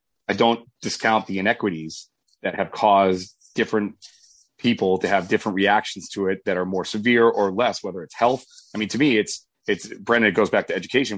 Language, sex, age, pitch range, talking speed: English, male, 30-49, 95-110 Hz, 200 wpm